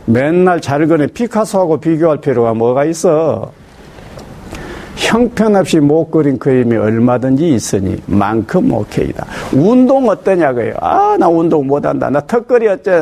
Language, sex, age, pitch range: Korean, male, 50-69, 125-190 Hz